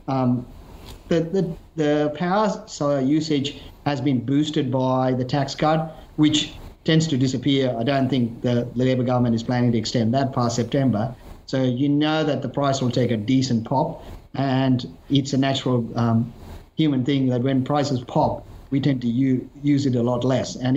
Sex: male